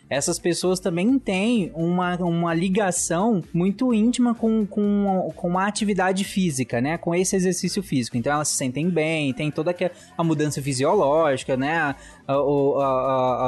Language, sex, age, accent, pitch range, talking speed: Portuguese, male, 20-39, Brazilian, 140-190 Hz, 160 wpm